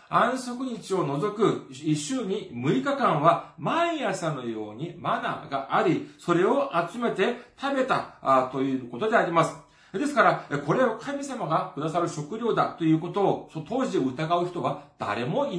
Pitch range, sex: 150-245 Hz, male